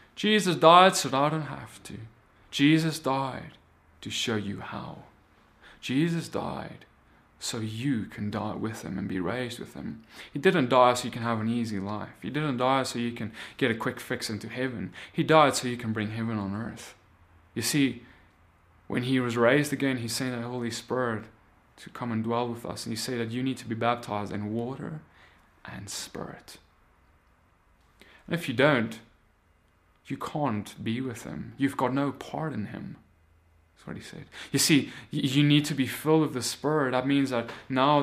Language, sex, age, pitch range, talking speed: English, male, 20-39, 110-135 Hz, 190 wpm